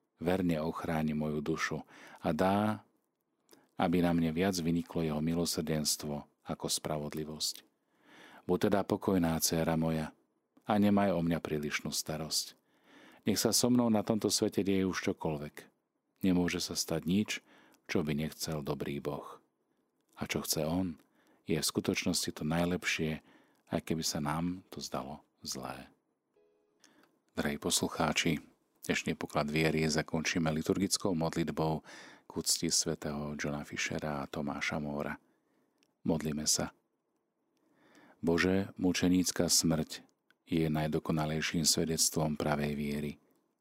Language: Slovak